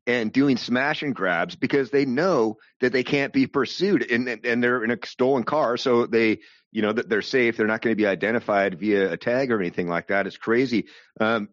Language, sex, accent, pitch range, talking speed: English, male, American, 95-120 Hz, 225 wpm